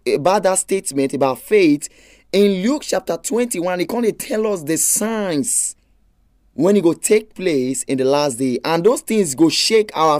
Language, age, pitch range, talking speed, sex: English, 20-39, 160-220 Hz, 180 wpm, male